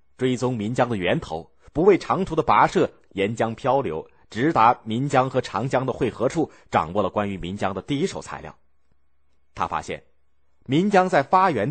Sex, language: male, Chinese